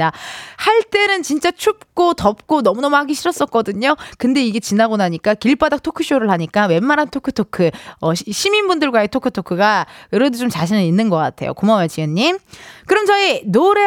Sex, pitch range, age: female, 205-305 Hz, 20-39